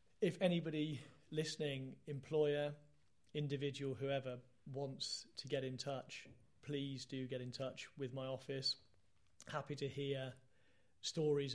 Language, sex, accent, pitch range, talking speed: English, male, British, 125-140 Hz, 120 wpm